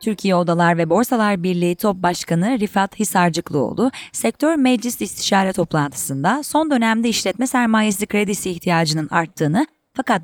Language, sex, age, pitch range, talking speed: Turkish, female, 30-49, 175-250 Hz, 125 wpm